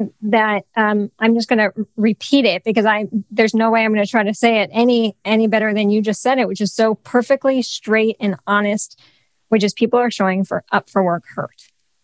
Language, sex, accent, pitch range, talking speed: English, female, American, 210-255 Hz, 225 wpm